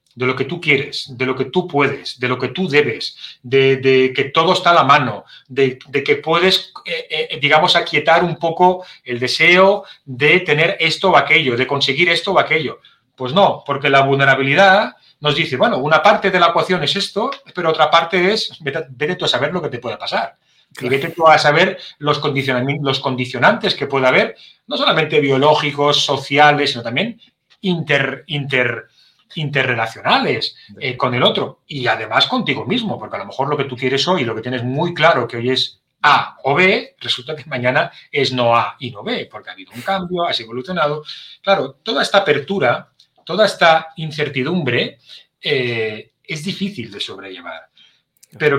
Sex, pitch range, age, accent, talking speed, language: male, 130-180 Hz, 30-49, Spanish, 190 wpm, Spanish